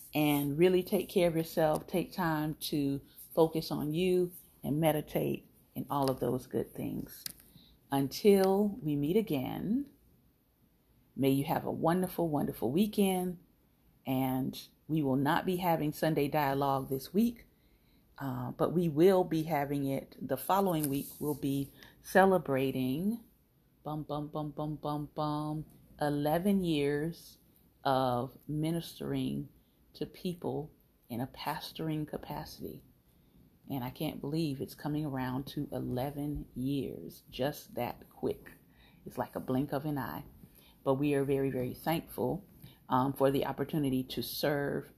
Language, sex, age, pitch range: English, female, 40-59, 135-165 Hz